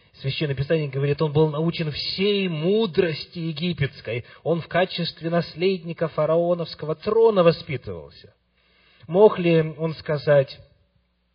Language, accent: Russian, native